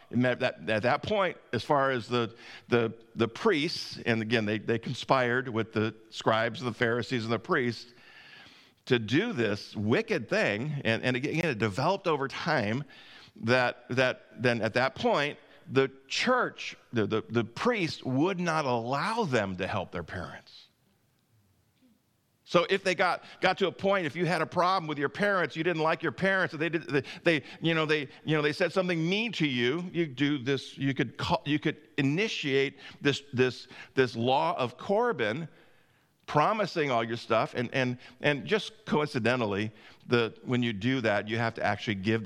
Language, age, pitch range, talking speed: English, 50-69, 115-155 Hz, 180 wpm